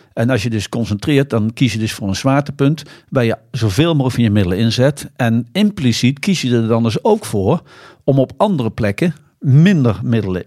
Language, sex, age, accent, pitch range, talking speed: Dutch, male, 50-69, Dutch, 110-140 Hz, 200 wpm